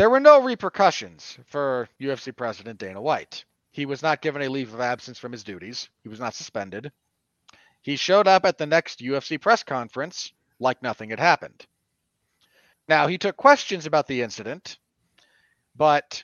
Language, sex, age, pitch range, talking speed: English, male, 30-49, 145-195 Hz, 165 wpm